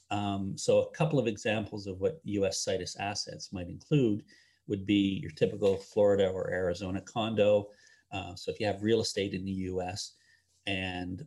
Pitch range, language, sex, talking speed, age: 95-130 Hz, English, male, 170 wpm, 40-59